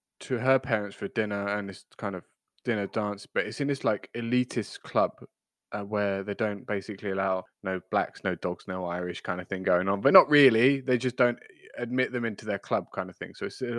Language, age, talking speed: English, 20-39, 220 wpm